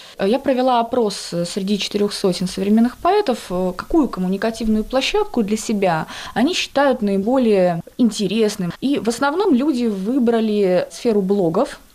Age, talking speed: 20-39, 120 wpm